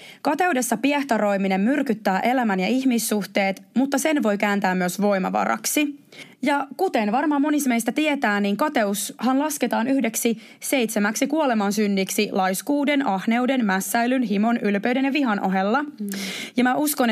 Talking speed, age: 125 wpm, 20-39